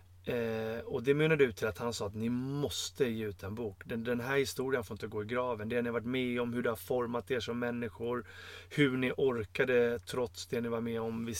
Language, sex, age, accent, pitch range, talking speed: Swedish, male, 30-49, native, 105-135 Hz, 255 wpm